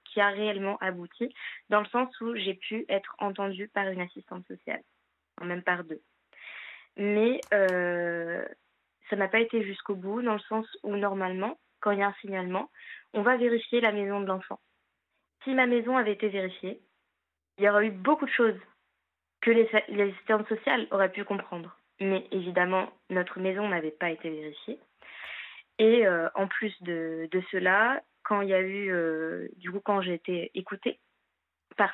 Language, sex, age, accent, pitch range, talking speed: French, female, 20-39, French, 180-220 Hz, 180 wpm